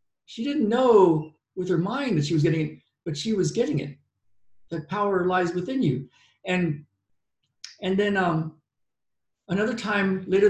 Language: English